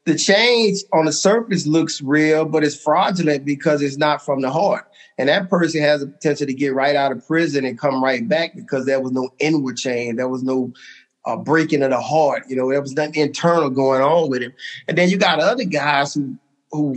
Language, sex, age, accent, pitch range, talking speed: English, male, 30-49, American, 140-165 Hz, 225 wpm